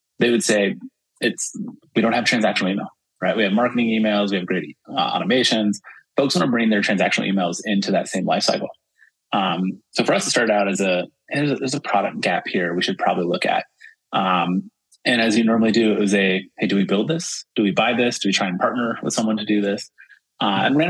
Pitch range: 95-120 Hz